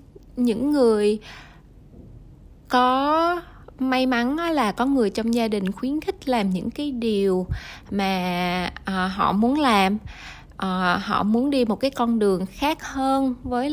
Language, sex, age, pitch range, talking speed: Vietnamese, female, 20-39, 200-265 Hz, 145 wpm